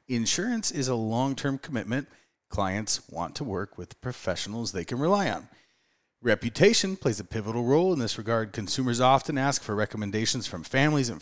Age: 30-49